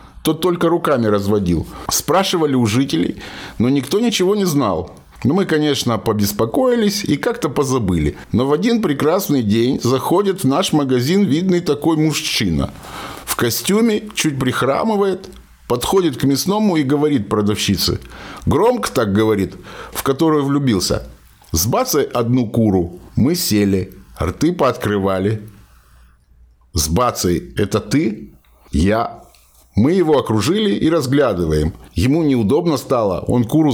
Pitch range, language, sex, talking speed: 105-170 Hz, Russian, male, 125 wpm